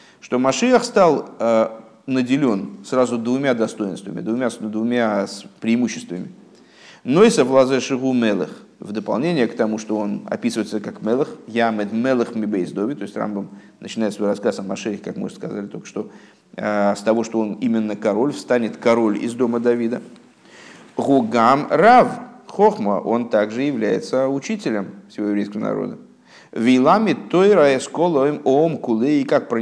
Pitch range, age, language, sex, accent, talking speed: 110-155 Hz, 50-69, Russian, male, native, 130 wpm